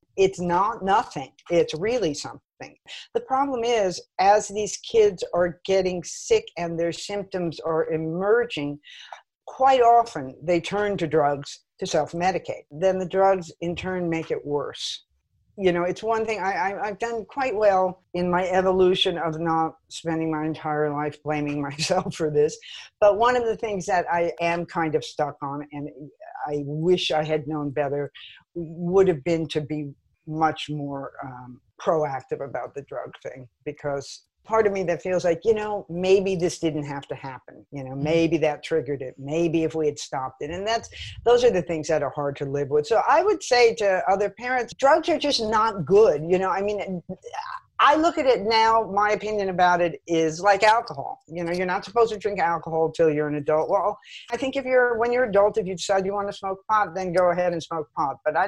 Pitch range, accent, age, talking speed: 155-205 Hz, American, 50-69, 200 wpm